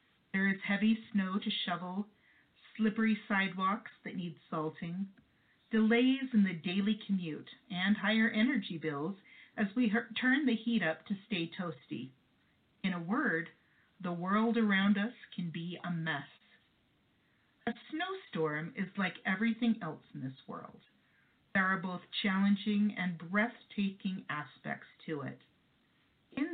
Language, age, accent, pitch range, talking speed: English, 40-59, American, 180-230 Hz, 135 wpm